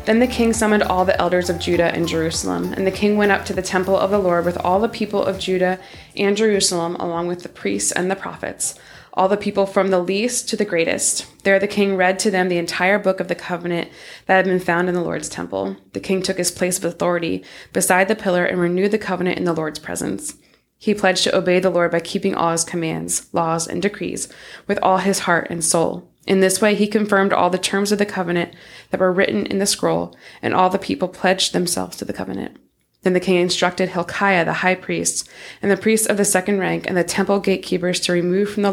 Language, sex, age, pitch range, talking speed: English, female, 20-39, 175-195 Hz, 235 wpm